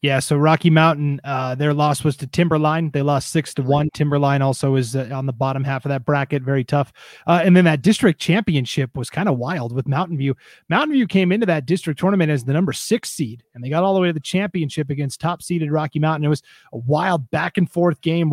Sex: male